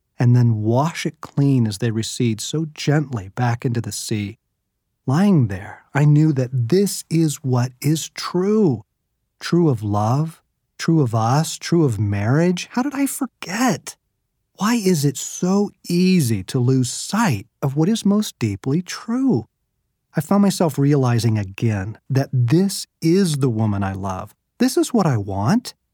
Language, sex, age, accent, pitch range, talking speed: English, male, 40-59, American, 115-170 Hz, 155 wpm